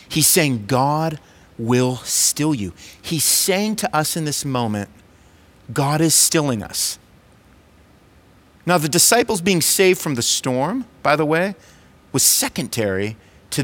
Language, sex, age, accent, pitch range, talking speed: English, male, 40-59, American, 95-130 Hz, 135 wpm